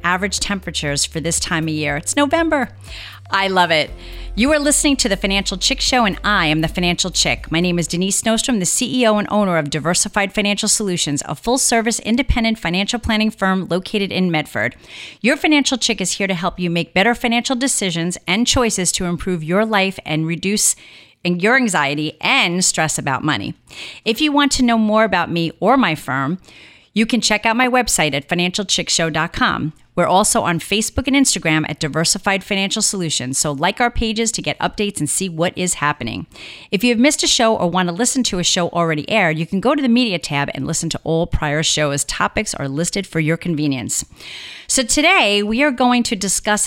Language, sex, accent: English, female, American